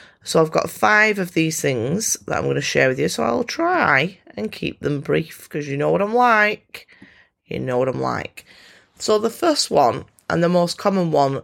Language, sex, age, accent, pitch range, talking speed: English, female, 30-49, British, 140-185 Hz, 215 wpm